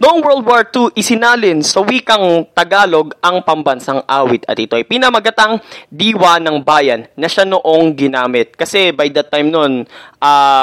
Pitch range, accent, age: 145-220 Hz, native, 20-39